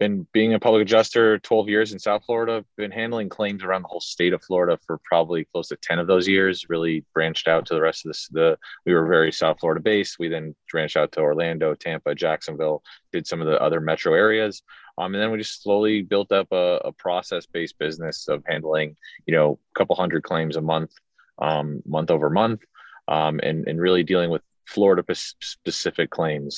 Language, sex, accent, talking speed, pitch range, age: English, male, American, 210 wpm, 80-110 Hz, 30-49